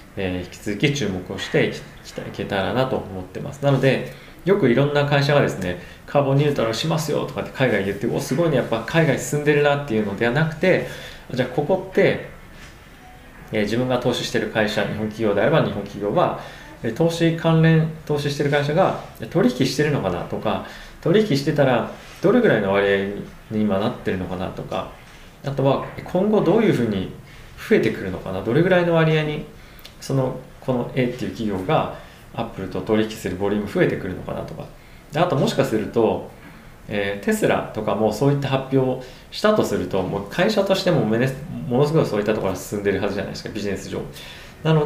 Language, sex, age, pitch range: Japanese, male, 20-39, 105-150 Hz